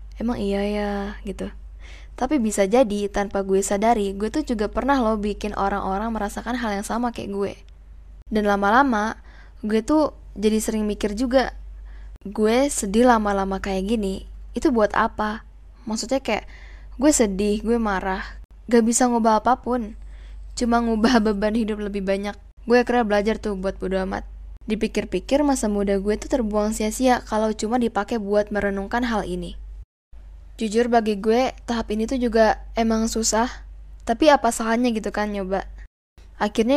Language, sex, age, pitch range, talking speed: Indonesian, female, 10-29, 200-235 Hz, 150 wpm